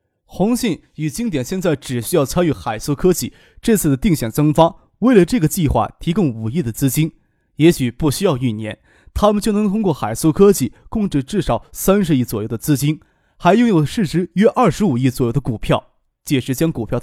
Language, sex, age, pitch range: Chinese, male, 20-39, 130-195 Hz